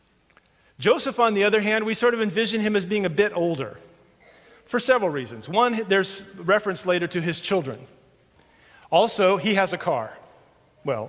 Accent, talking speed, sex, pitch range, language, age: American, 170 wpm, male, 140-205 Hz, English, 40-59